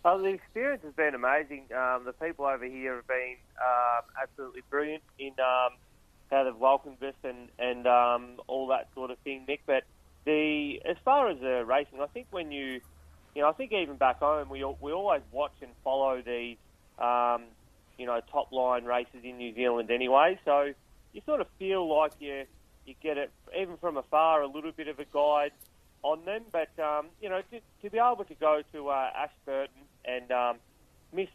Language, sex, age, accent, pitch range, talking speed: English, male, 30-49, Australian, 120-145 Hz, 200 wpm